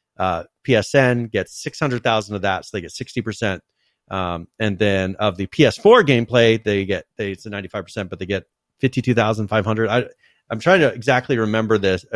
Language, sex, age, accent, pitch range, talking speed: English, male, 40-59, American, 100-125 Hz, 175 wpm